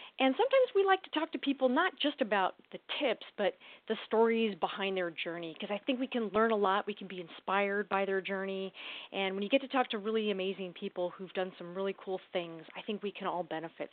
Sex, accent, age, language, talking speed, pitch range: female, American, 30-49, English, 240 wpm, 195-265 Hz